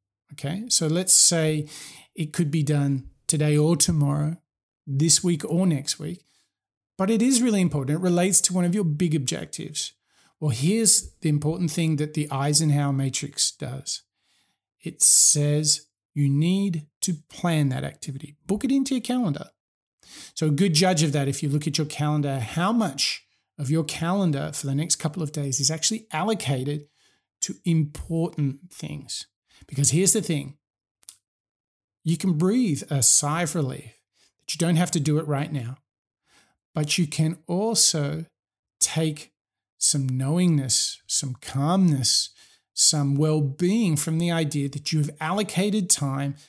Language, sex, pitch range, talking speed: English, male, 140-175 Hz, 155 wpm